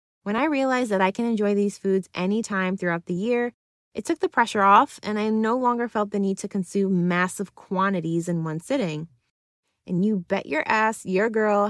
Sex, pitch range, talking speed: female, 175-220 Hz, 200 wpm